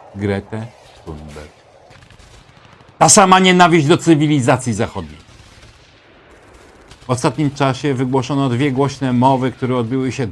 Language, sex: Polish, male